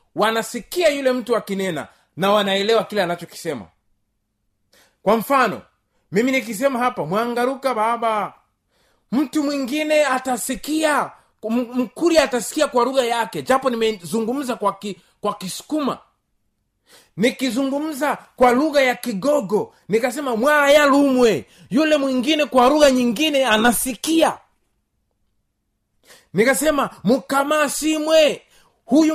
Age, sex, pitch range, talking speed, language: 30-49, male, 220-280 Hz, 105 wpm, Swahili